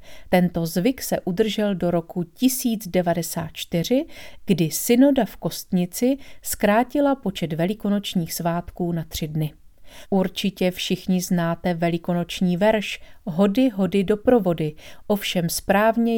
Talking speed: 110 wpm